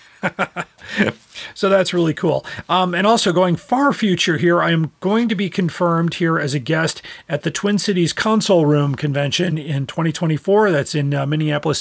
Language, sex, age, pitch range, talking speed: English, male, 40-59, 150-185 Hz, 175 wpm